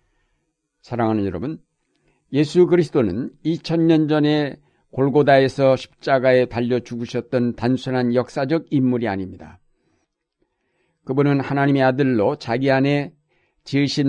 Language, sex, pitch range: Korean, male, 120-150 Hz